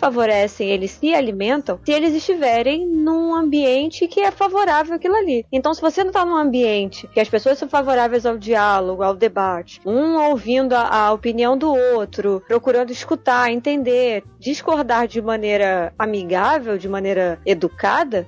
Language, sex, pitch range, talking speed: Portuguese, female, 240-340 Hz, 155 wpm